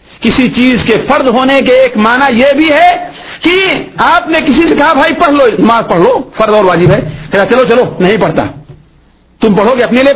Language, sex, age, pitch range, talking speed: Urdu, male, 50-69, 225-320 Hz, 205 wpm